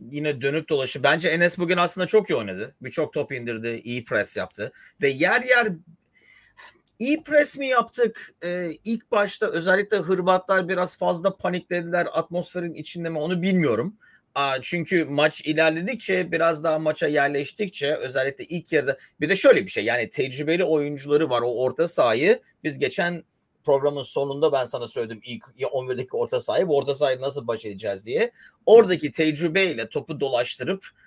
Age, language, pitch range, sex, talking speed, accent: 40-59, Turkish, 140-185 Hz, male, 155 wpm, native